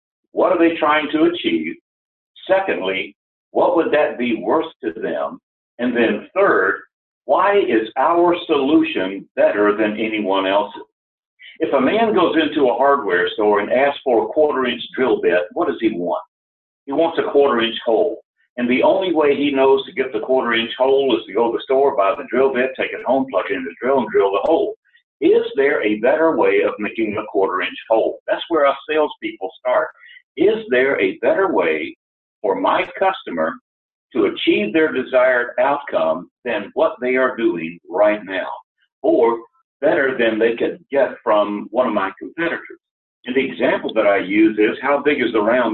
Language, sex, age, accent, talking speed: English, male, 60-79, American, 185 wpm